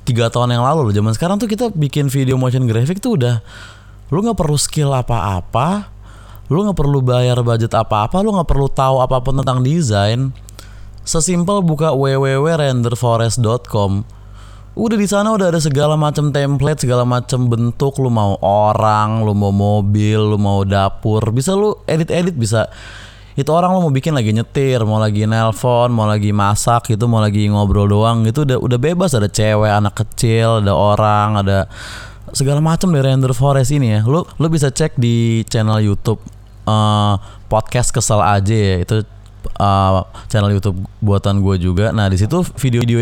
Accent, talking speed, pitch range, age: native, 165 wpm, 105-135 Hz, 20-39